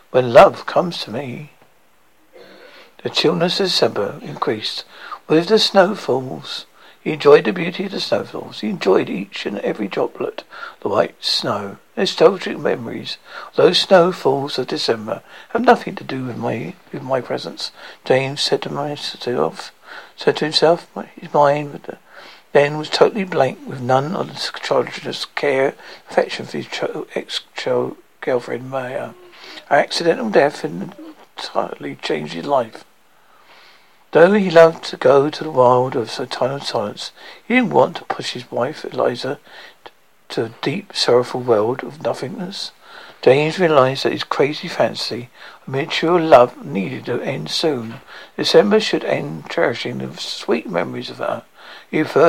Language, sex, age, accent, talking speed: English, male, 60-79, British, 140 wpm